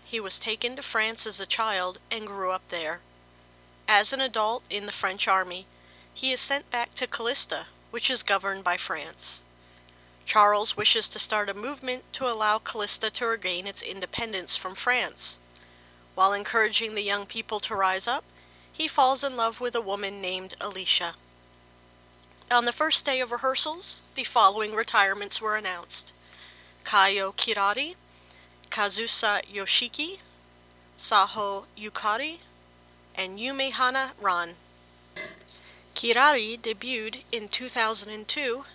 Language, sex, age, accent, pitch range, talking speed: English, female, 40-59, American, 165-235 Hz, 135 wpm